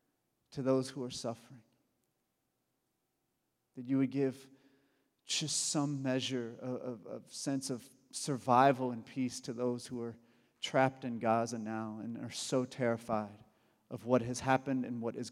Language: English